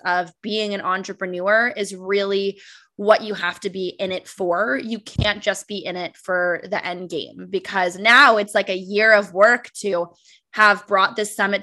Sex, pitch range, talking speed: female, 190-230 Hz, 190 wpm